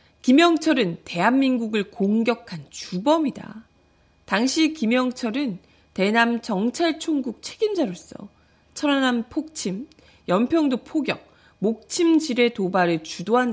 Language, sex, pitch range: Korean, female, 190-290 Hz